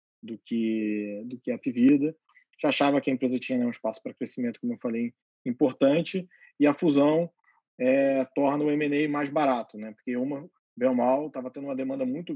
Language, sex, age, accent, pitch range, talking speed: Portuguese, male, 20-39, Brazilian, 115-150 Hz, 205 wpm